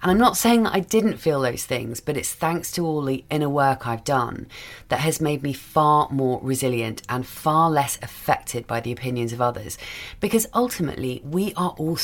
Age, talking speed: 30-49, 205 wpm